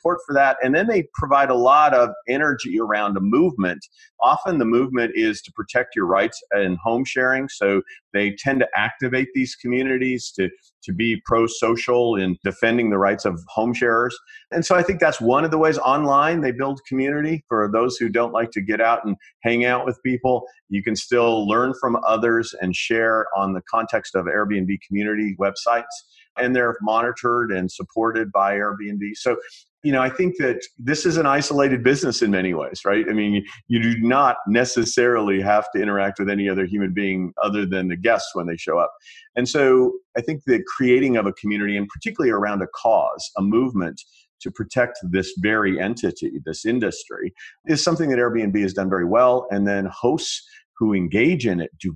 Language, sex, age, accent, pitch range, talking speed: English, male, 40-59, American, 100-130 Hz, 190 wpm